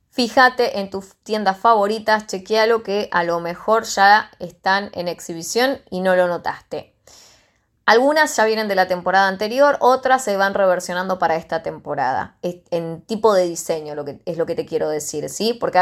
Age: 20-39